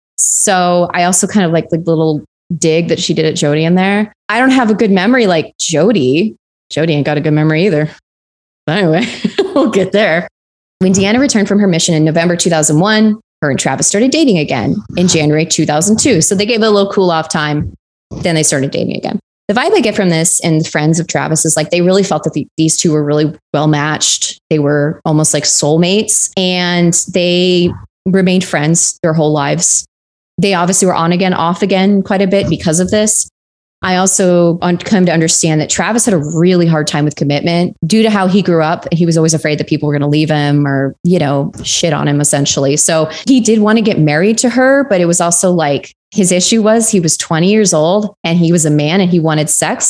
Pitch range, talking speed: 155-195 Hz, 220 wpm